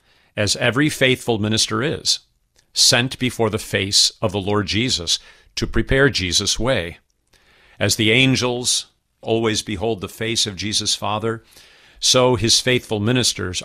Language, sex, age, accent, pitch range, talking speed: English, male, 50-69, American, 100-130 Hz, 135 wpm